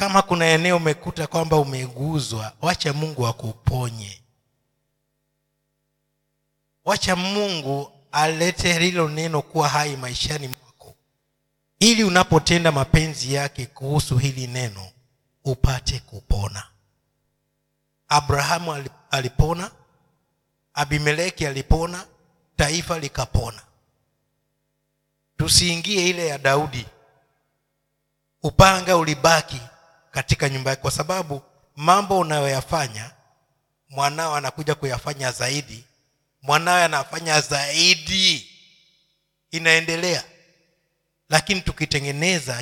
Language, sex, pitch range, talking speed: Swahili, male, 130-165 Hz, 80 wpm